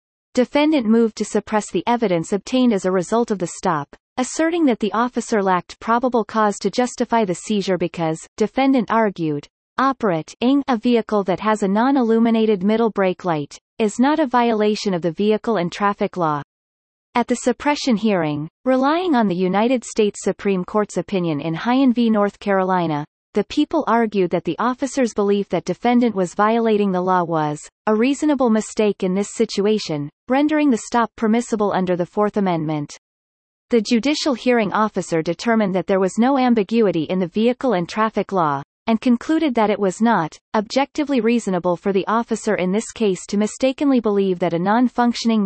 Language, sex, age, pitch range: English, female, 40-59, 185-235 Hz